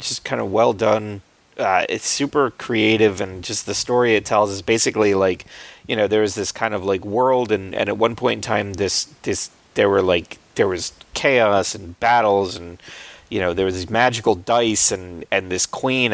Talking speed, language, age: 205 wpm, English, 30-49